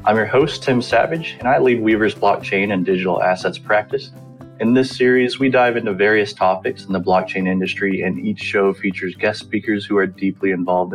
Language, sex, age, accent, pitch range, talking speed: English, male, 20-39, American, 95-110 Hz, 195 wpm